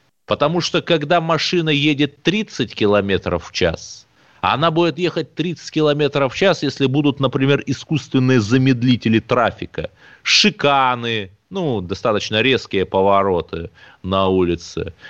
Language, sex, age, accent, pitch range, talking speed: Russian, male, 30-49, native, 100-145 Hz, 115 wpm